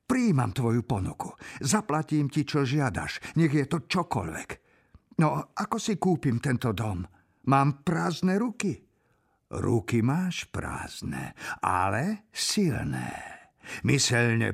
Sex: male